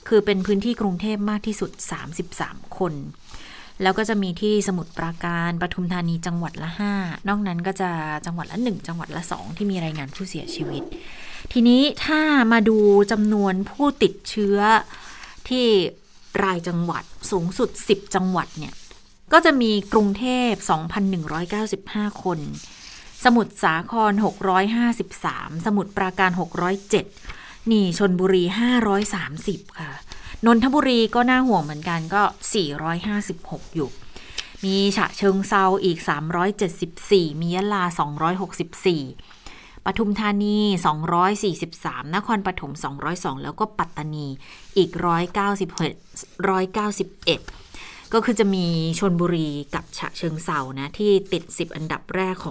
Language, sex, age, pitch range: Thai, female, 20-39, 170-210 Hz